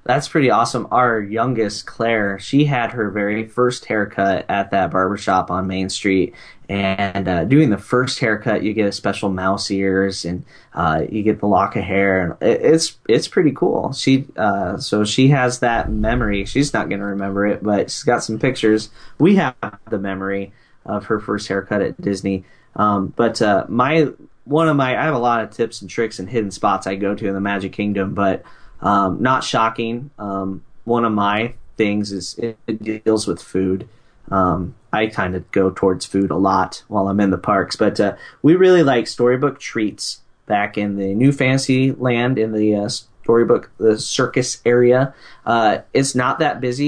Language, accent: English, American